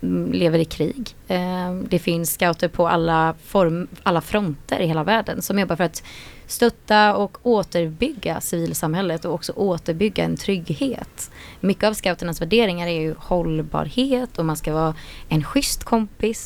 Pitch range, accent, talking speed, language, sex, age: 165-200 Hz, native, 150 wpm, Swedish, female, 20-39